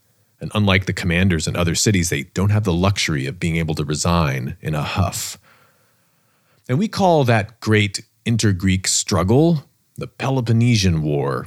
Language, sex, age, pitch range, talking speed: English, male, 30-49, 90-120 Hz, 155 wpm